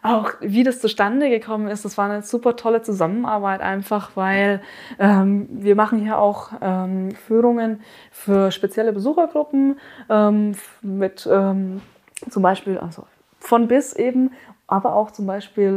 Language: German